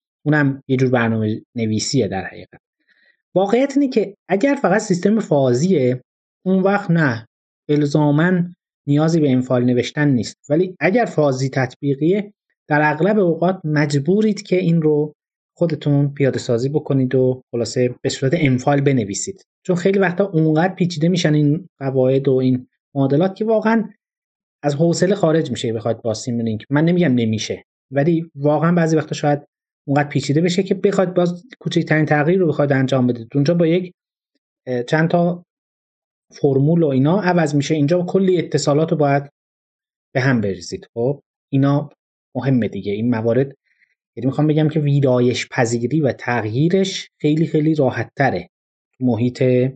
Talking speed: 145 wpm